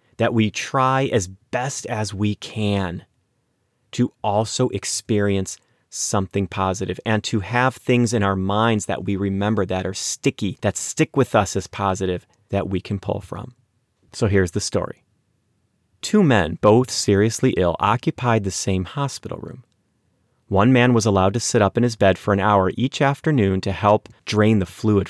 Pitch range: 95-120 Hz